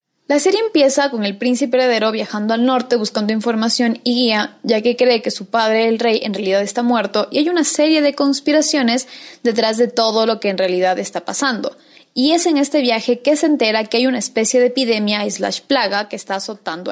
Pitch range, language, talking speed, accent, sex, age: 210-265 Hz, Spanish, 210 wpm, Mexican, female, 20-39